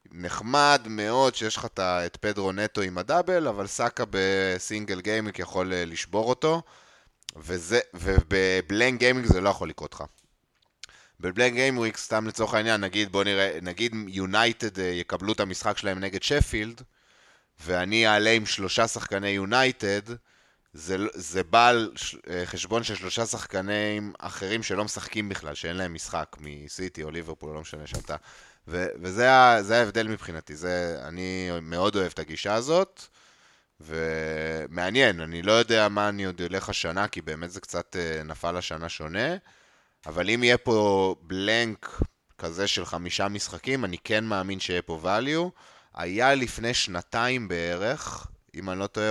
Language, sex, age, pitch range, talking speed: Hebrew, male, 20-39, 90-110 Hz, 140 wpm